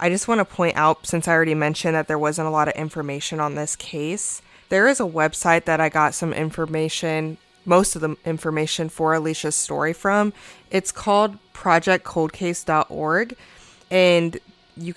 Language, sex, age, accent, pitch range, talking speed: English, female, 20-39, American, 155-180 Hz, 170 wpm